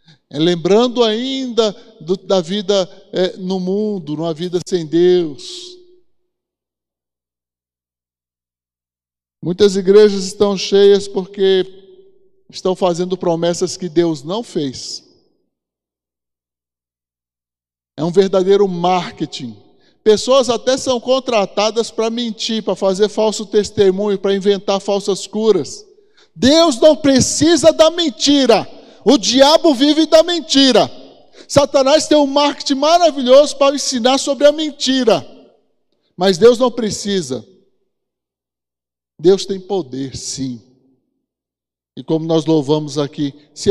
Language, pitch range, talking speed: Portuguese, 135-225 Hz, 100 wpm